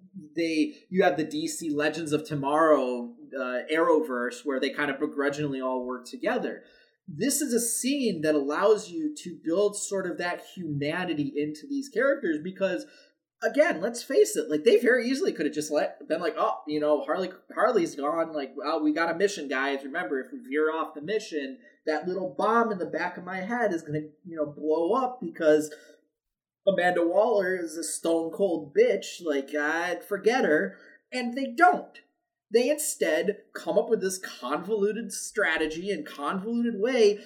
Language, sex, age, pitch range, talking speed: English, male, 20-39, 150-220 Hz, 180 wpm